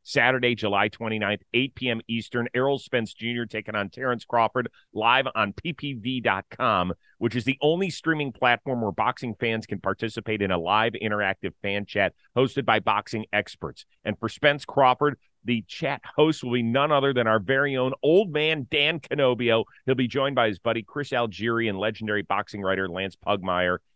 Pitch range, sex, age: 105-130 Hz, male, 40-59